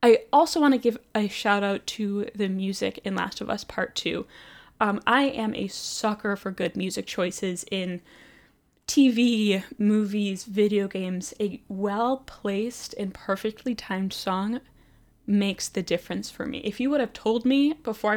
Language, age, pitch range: English, 10-29, 195-235 Hz